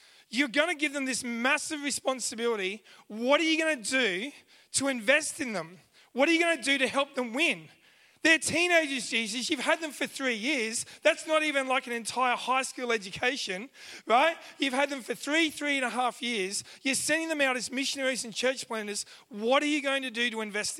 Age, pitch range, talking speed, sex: 30-49, 235-300 Hz, 215 wpm, male